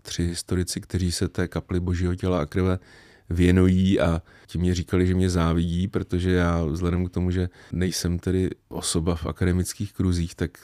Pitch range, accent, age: 85-95 Hz, native, 30-49